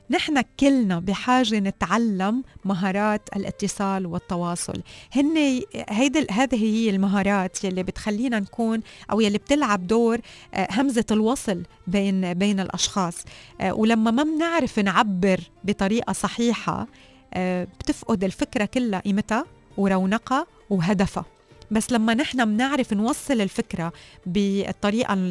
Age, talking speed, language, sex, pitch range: 30-49, 100 wpm, Arabic, female, 190-230 Hz